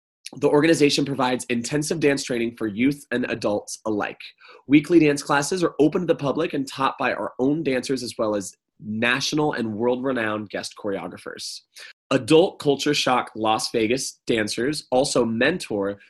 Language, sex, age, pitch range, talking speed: English, male, 20-39, 110-140 Hz, 155 wpm